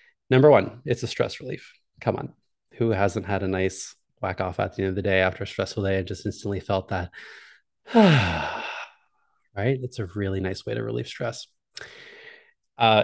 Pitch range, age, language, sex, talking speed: 100-120 Hz, 20-39, English, male, 185 wpm